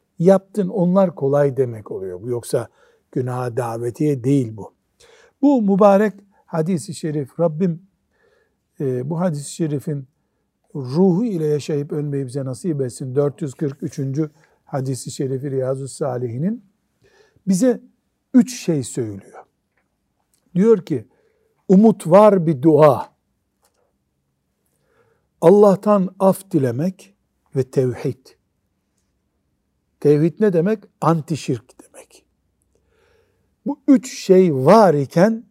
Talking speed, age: 95 wpm, 60-79